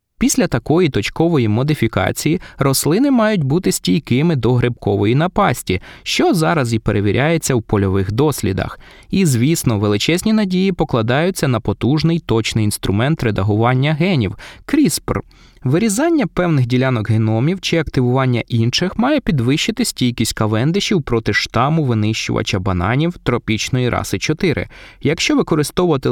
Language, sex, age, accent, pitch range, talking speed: Ukrainian, male, 20-39, native, 110-160 Hz, 115 wpm